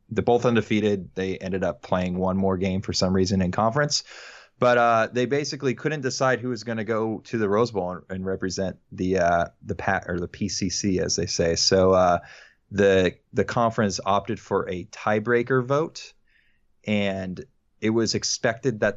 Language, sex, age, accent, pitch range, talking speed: English, male, 20-39, American, 95-110 Hz, 185 wpm